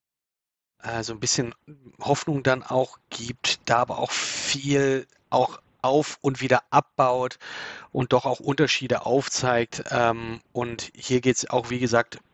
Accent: German